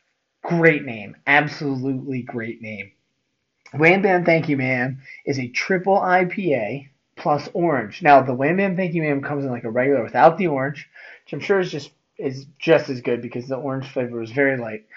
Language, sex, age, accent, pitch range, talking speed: English, male, 30-49, American, 130-160 Hz, 180 wpm